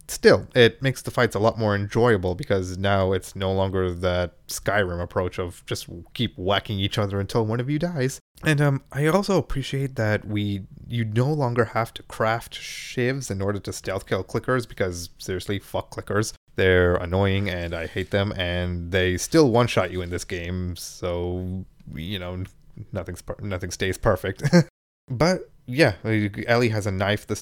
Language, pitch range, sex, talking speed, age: English, 95-115 Hz, male, 175 wpm, 20-39